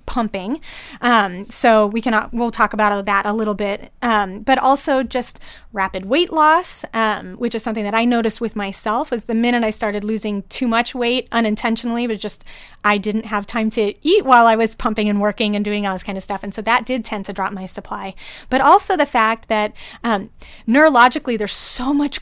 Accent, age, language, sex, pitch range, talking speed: American, 30-49, English, female, 210-255 Hz, 210 wpm